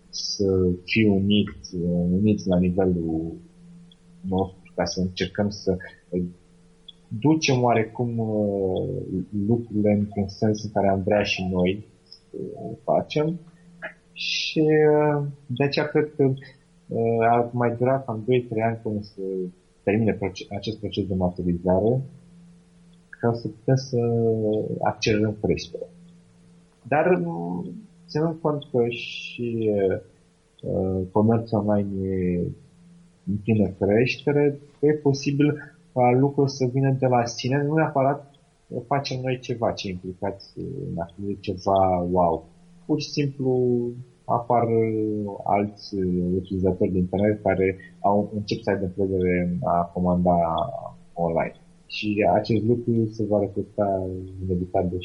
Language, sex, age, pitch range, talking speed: Romanian, male, 30-49, 95-130 Hz, 110 wpm